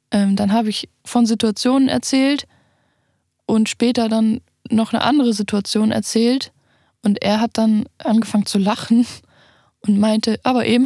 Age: 10-29